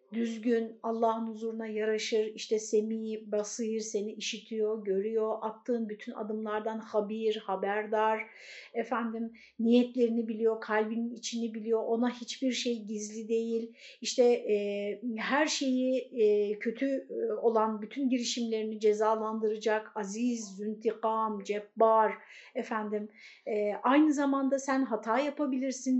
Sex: female